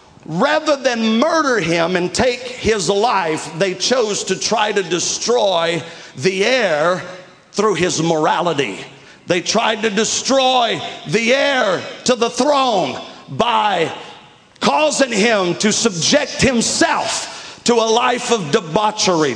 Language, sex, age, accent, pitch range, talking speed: English, male, 50-69, American, 215-255 Hz, 120 wpm